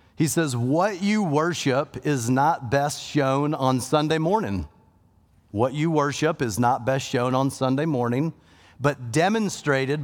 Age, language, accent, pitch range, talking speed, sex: 40-59, English, American, 120-170 Hz, 145 wpm, male